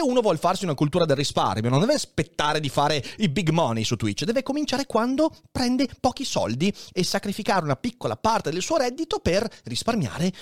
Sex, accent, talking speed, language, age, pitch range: male, native, 190 wpm, Italian, 30-49, 115-190 Hz